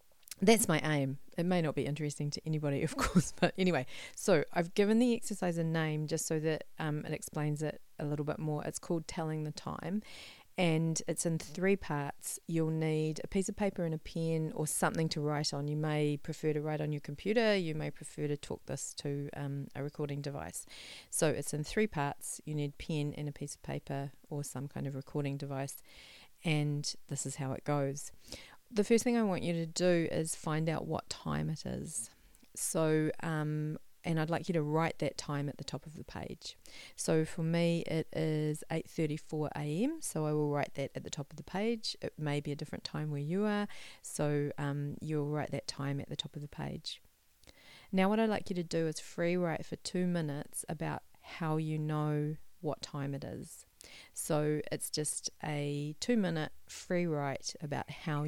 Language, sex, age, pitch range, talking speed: English, female, 40-59, 145-165 Hz, 205 wpm